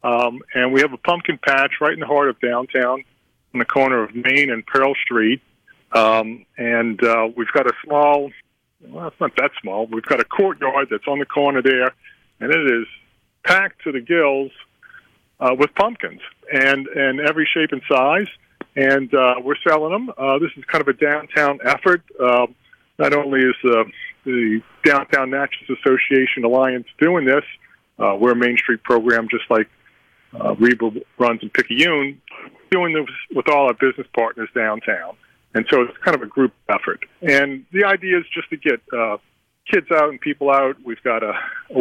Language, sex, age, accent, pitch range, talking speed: English, male, 40-59, American, 125-150 Hz, 185 wpm